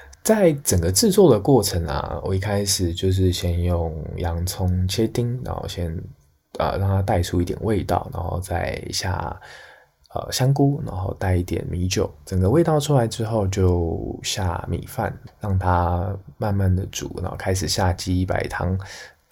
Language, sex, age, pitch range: Chinese, male, 20-39, 90-140 Hz